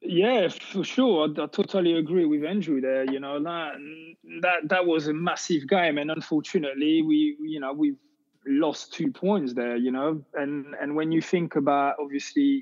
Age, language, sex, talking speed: 20-39, English, male, 180 wpm